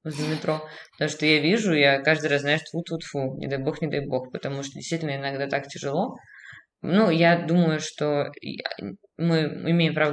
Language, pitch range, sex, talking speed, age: Russian, 145-170 Hz, female, 185 wpm, 20-39